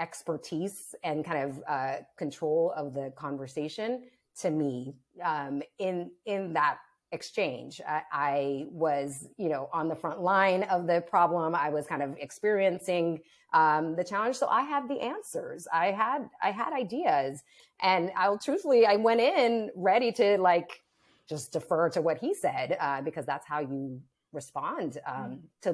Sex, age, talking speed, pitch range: female, 30-49, 160 wpm, 145-210 Hz